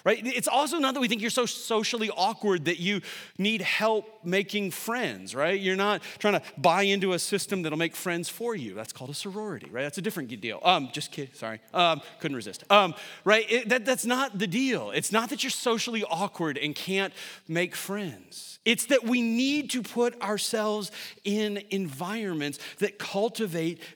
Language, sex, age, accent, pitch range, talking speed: English, male, 40-59, American, 165-225 Hz, 195 wpm